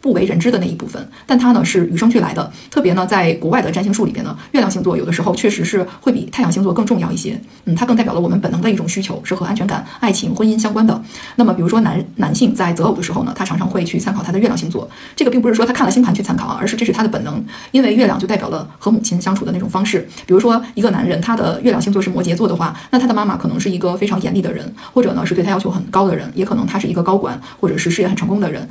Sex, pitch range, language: female, 185-230 Hz, Chinese